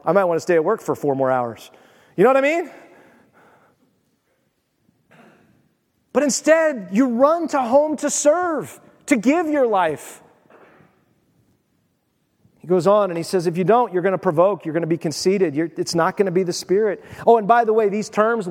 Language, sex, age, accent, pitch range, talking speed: English, male, 30-49, American, 170-230 Hz, 195 wpm